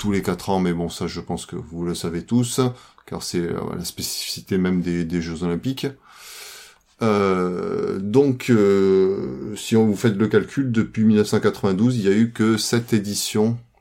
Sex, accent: male, French